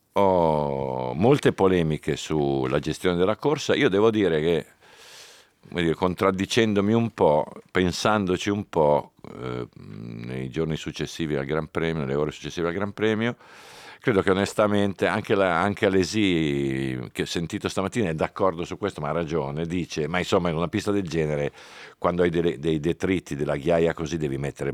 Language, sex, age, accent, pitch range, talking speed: Italian, male, 50-69, native, 70-90 Hz, 155 wpm